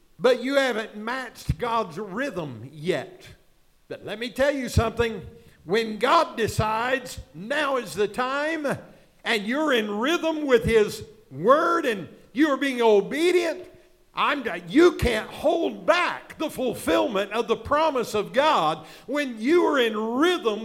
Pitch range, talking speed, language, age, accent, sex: 185-255 Hz, 140 wpm, English, 50-69, American, male